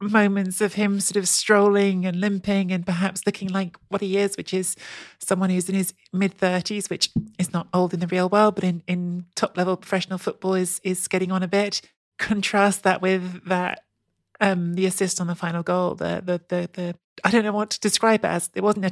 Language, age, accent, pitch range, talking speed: English, 30-49, British, 180-205 Hz, 215 wpm